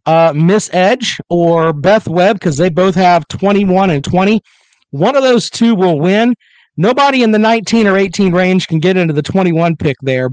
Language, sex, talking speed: English, male, 190 wpm